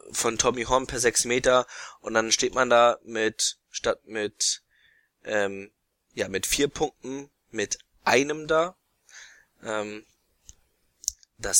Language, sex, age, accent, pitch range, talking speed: German, male, 20-39, German, 105-120 Hz, 125 wpm